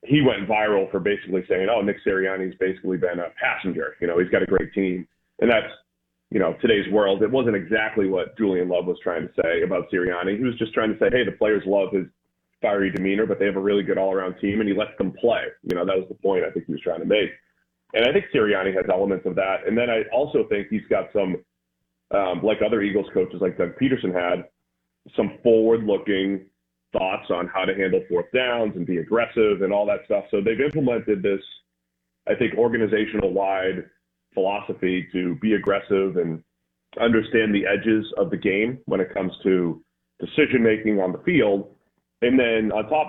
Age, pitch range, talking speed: 30-49, 90-110 Hz, 210 wpm